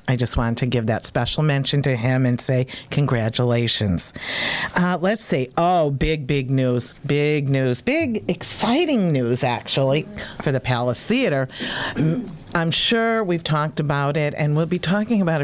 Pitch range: 130-170 Hz